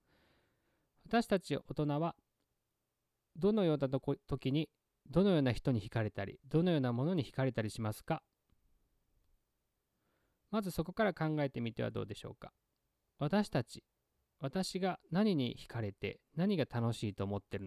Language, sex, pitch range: Japanese, male, 120-185 Hz